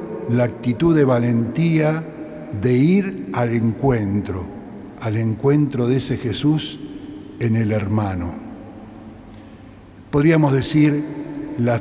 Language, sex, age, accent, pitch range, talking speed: Spanish, male, 60-79, Argentinian, 115-150 Hz, 95 wpm